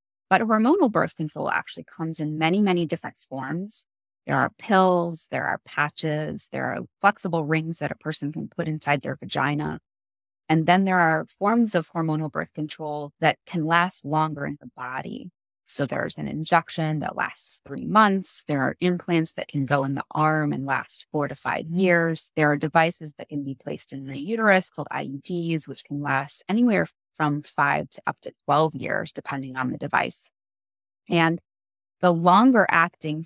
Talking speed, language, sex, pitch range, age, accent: 180 wpm, English, female, 145-175 Hz, 20-39, American